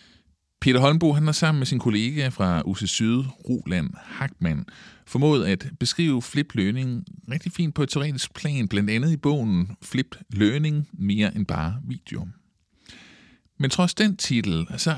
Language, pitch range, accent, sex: Danish, 100-150 Hz, native, male